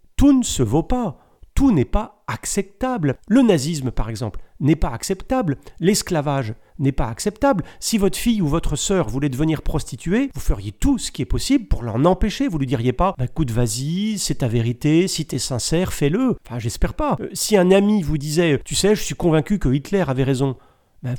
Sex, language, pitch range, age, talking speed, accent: male, French, 130-195 Hz, 40-59, 210 wpm, French